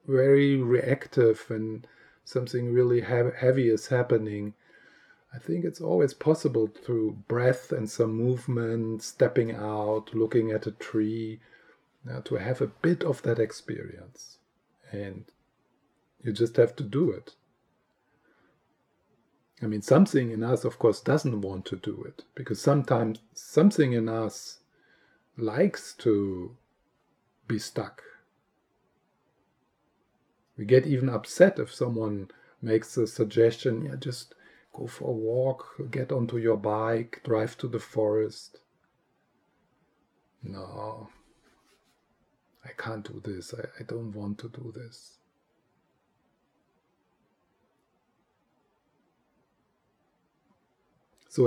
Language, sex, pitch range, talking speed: English, male, 110-130 Hz, 115 wpm